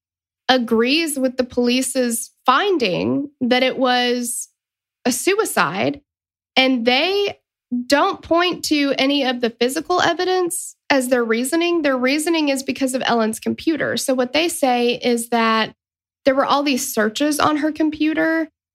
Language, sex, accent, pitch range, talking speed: English, female, American, 220-270 Hz, 140 wpm